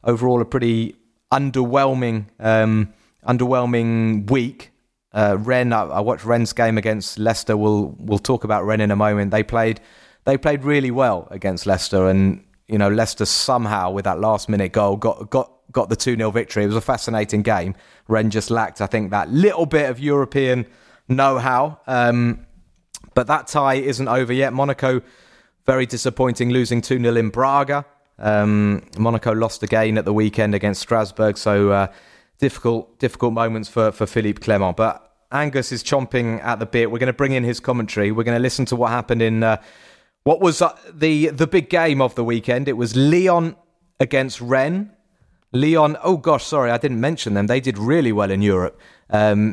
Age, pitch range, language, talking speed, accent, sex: 30-49, 105-130 Hz, English, 185 wpm, British, male